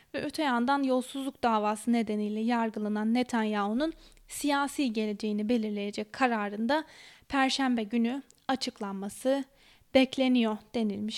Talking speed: 90 wpm